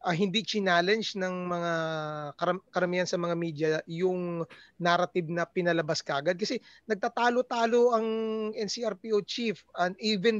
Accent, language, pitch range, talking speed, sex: Filipino, English, 175-220 Hz, 125 wpm, male